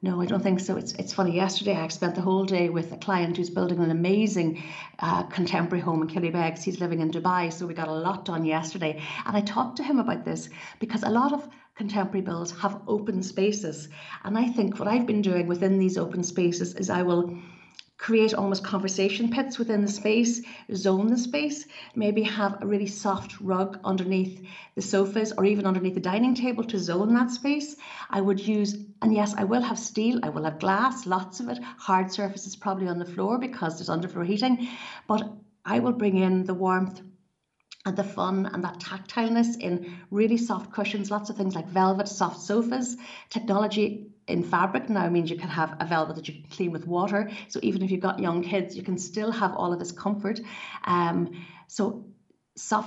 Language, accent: English, Irish